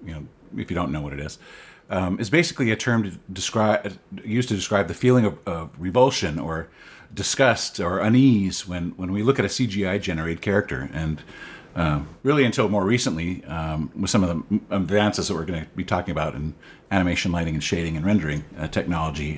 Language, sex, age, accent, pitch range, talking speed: English, male, 50-69, American, 90-125 Hz, 200 wpm